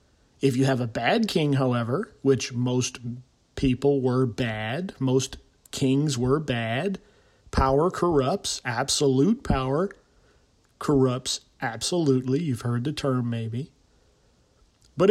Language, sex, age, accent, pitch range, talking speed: English, male, 40-59, American, 135-210 Hz, 110 wpm